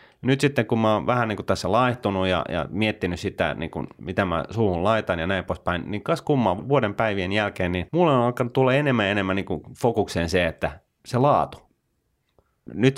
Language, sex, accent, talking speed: Finnish, male, native, 200 wpm